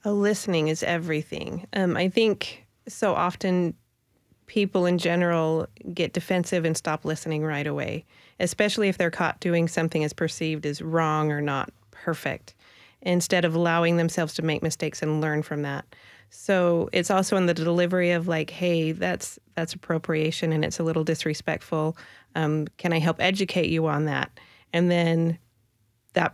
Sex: female